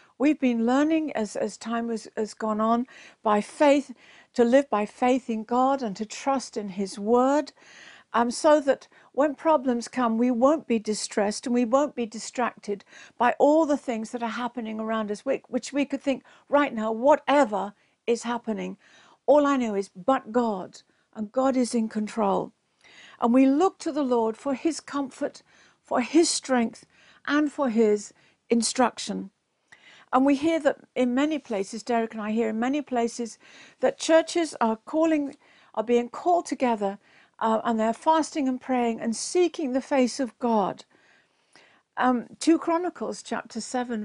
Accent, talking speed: British, 170 wpm